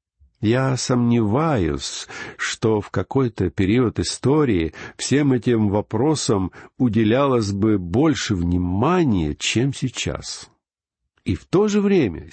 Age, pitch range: 60-79, 95-150 Hz